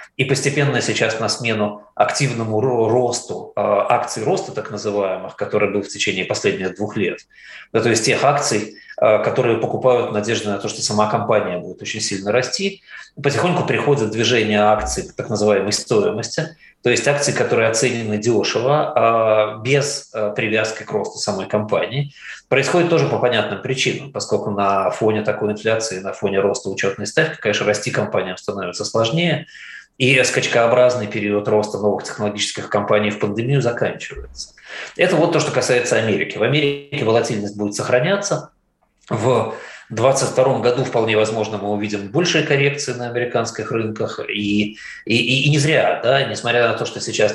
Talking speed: 150 wpm